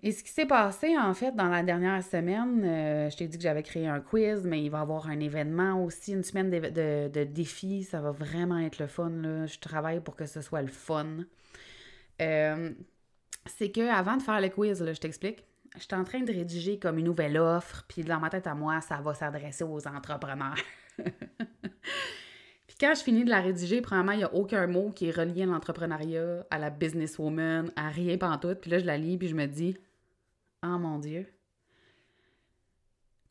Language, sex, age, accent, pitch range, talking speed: French, female, 20-39, Canadian, 150-185 Hz, 220 wpm